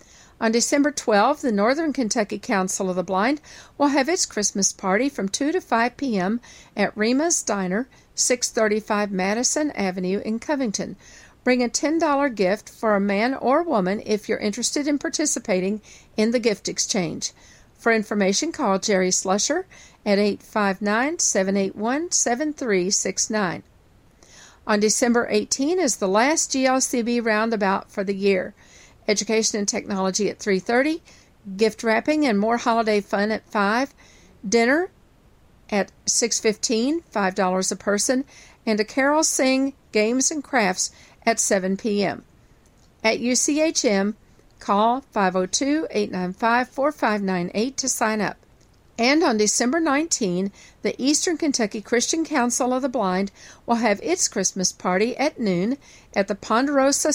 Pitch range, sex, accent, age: 200-265 Hz, female, American, 50-69